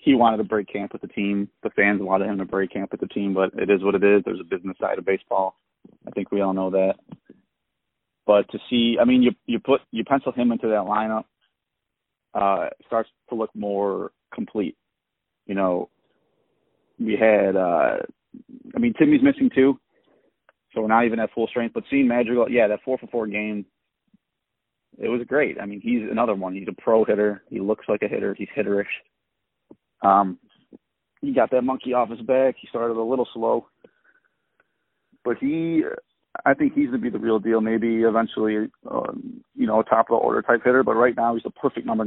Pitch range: 100-120 Hz